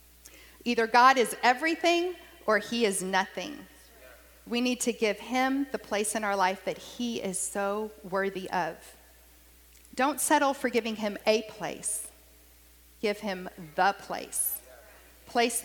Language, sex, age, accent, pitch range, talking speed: English, female, 40-59, American, 185-235 Hz, 140 wpm